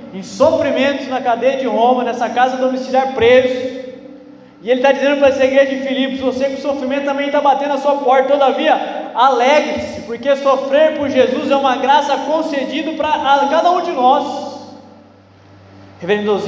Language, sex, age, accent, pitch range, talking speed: Portuguese, male, 20-39, Brazilian, 155-260 Hz, 160 wpm